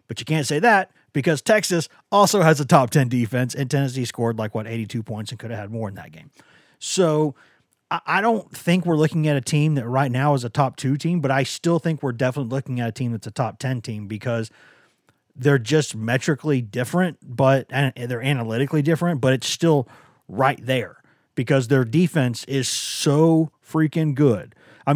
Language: English